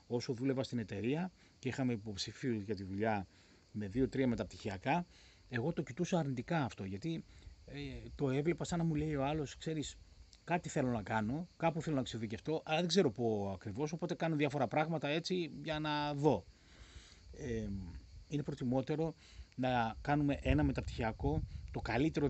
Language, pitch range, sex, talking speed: Greek, 100-145 Hz, male, 160 wpm